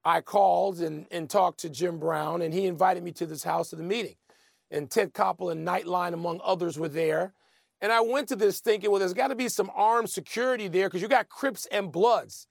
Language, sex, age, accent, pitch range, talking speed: English, male, 40-59, American, 190-255 Hz, 230 wpm